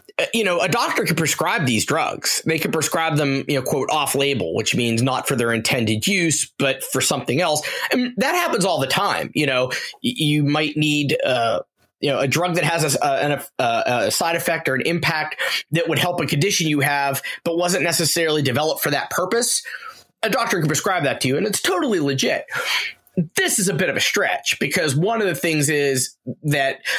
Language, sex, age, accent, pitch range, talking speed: English, male, 20-39, American, 135-165 Hz, 205 wpm